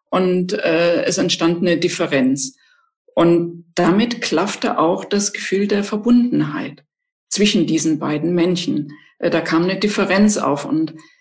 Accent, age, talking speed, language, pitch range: German, 50-69, 135 wpm, German, 170-225 Hz